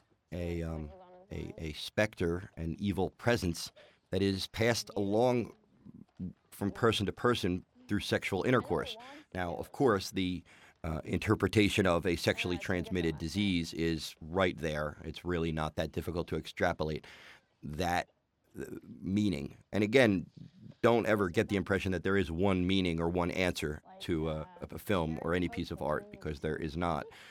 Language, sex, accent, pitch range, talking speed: English, male, American, 80-100 Hz, 155 wpm